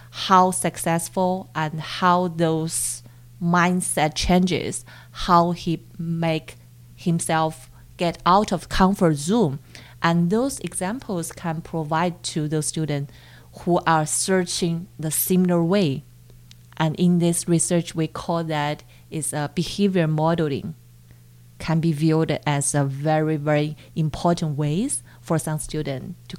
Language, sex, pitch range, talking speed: English, female, 140-175 Hz, 125 wpm